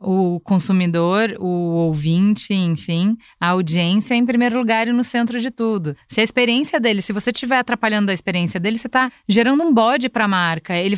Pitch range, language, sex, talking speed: 195-265 Hz, Portuguese, female, 195 wpm